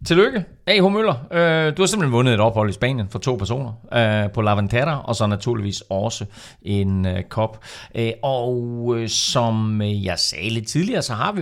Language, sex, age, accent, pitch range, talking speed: Danish, male, 40-59, native, 110-155 Hz, 170 wpm